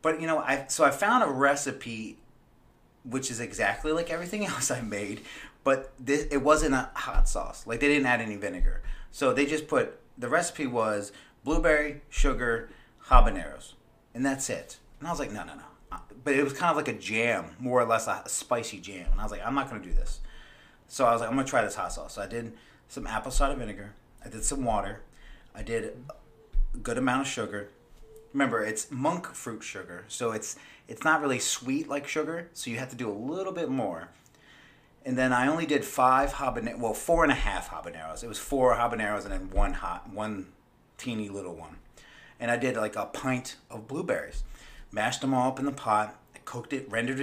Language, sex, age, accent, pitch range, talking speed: English, male, 30-49, American, 110-140 Hz, 210 wpm